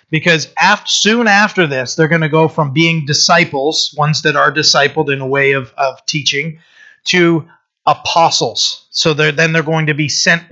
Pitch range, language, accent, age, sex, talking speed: 140-160 Hz, English, American, 40-59, male, 185 wpm